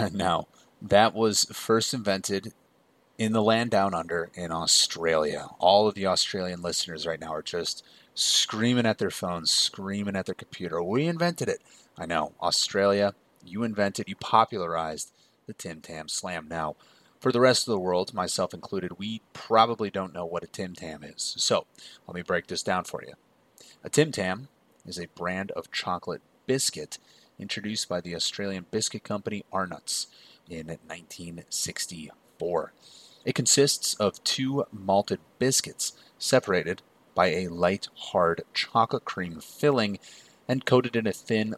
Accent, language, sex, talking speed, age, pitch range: American, English, male, 155 wpm, 30-49, 90-115 Hz